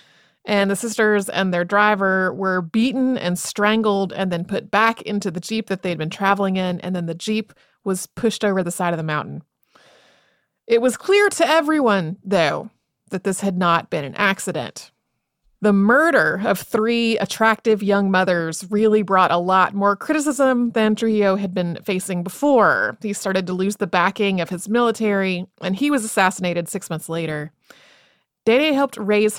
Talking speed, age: 175 wpm, 30-49